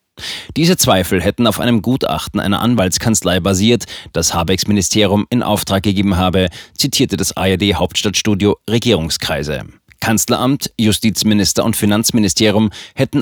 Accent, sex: German, male